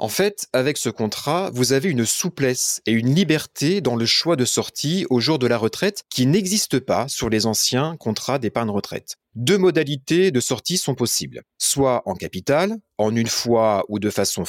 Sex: male